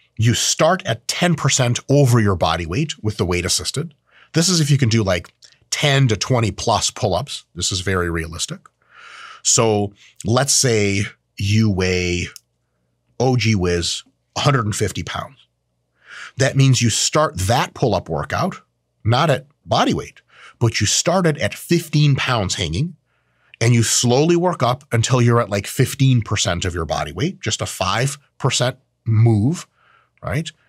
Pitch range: 100-135 Hz